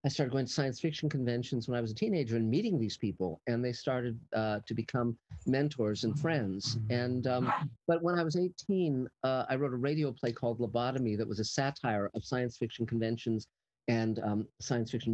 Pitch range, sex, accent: 110-135 Hz, male, American